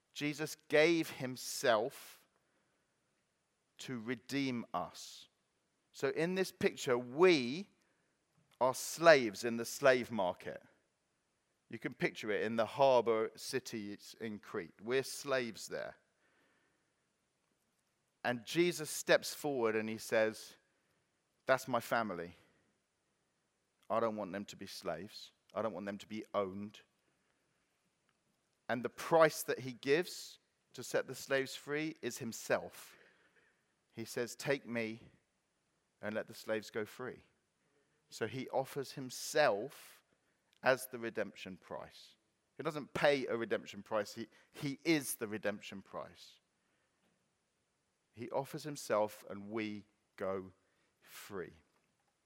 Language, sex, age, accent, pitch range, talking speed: English, male, 40-59, British, 110-140 Hz, 120 wpm